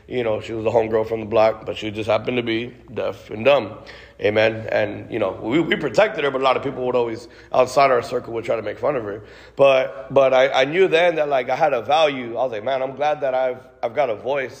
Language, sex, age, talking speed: English, male, 30-49, 275 wpm